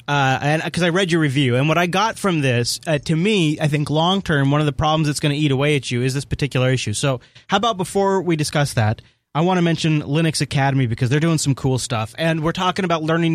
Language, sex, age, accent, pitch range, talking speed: English, male, 30-49, American, 130-165 Hz, 265 wpm